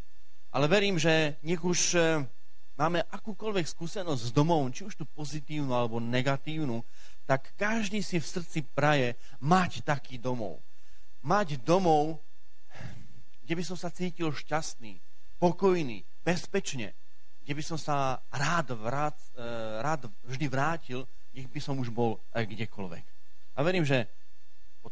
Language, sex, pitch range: Slovak, male, 110-155 Hz